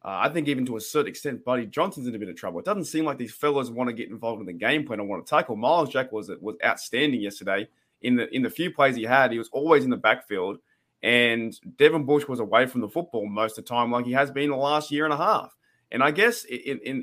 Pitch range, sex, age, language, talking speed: 125-160 Hz, male, 20-39, English, 280 wpm